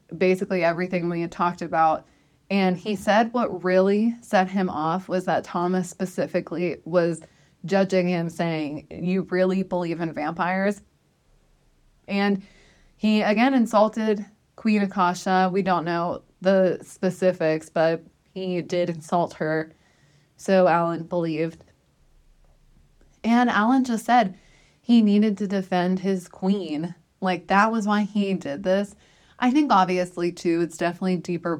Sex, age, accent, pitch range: female, 20-39, American, 170-190 Hz